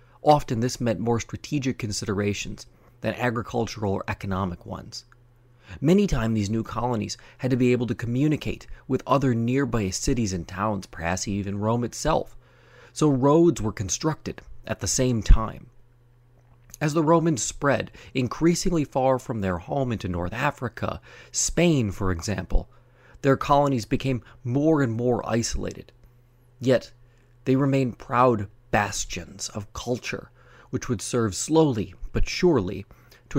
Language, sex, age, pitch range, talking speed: English, male, 30-49, 105-130 Hz, 135 wpm